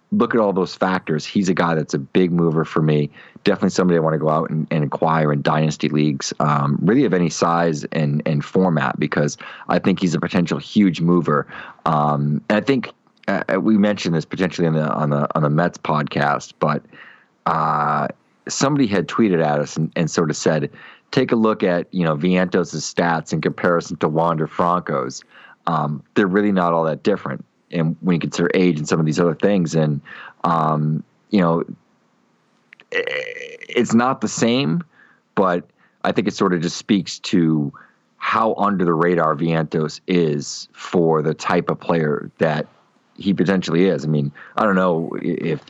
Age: 30-49